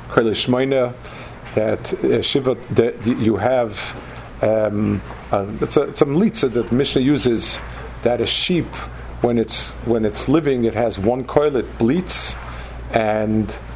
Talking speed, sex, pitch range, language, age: 120 wpm, male, 105-135 Hz, English, 50-69